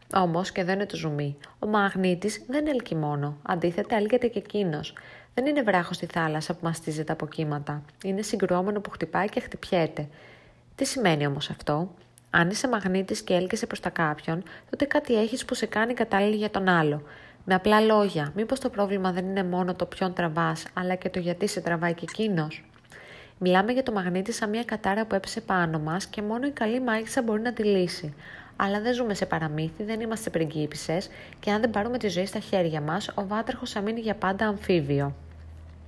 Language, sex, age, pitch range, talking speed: Greek, female, 20-39, 165-210 Hz, 195 wpm